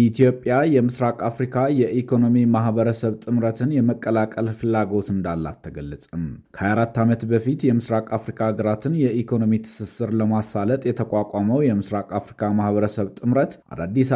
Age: 30-49